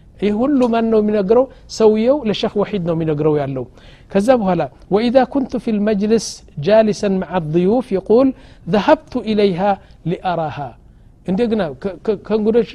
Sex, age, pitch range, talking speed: male, 60-79, 170-220 Hz, 125 wpm